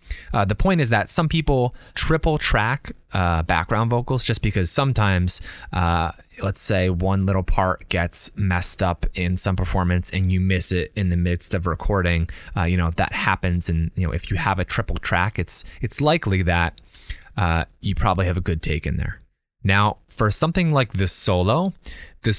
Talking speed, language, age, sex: 190 wpm, English, 20-39, male